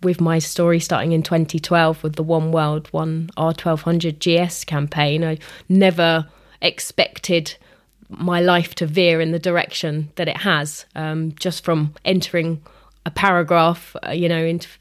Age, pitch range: 20-39, 160-180 Hz